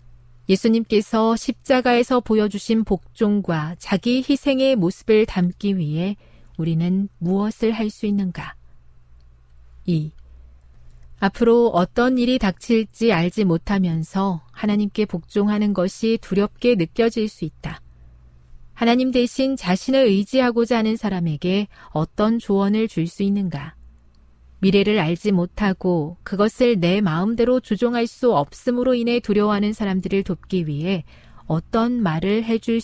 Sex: female